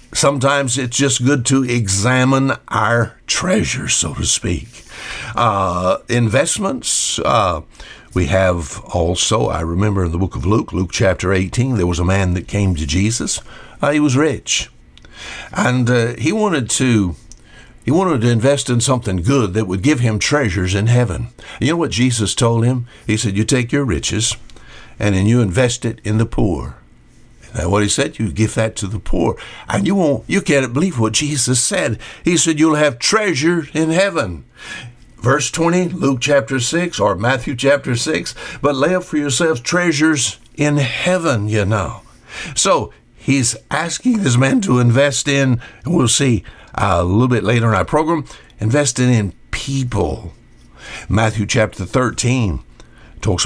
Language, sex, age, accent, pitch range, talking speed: English, male, 60-79, American, 105-140 Hz, 165 wpm